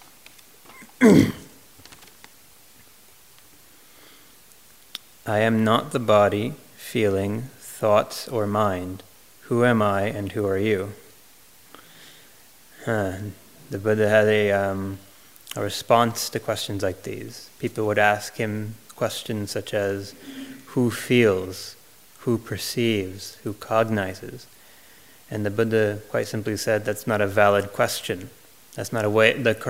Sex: male